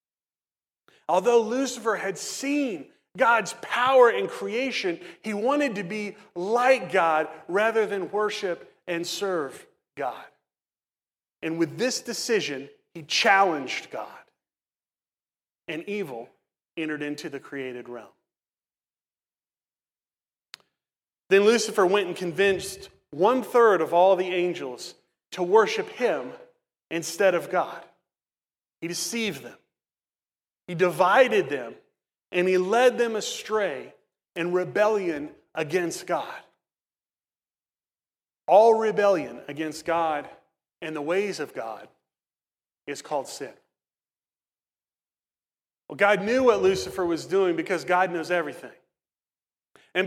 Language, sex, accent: English, male, American